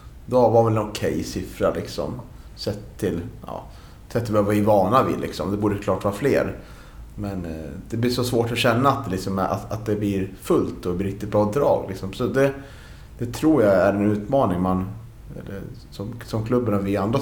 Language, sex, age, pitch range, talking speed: Swedish, male, 30-49, 100-115 Hz, 215 wpm